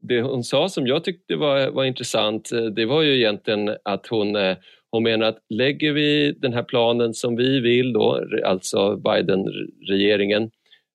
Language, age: Swedish, 40-59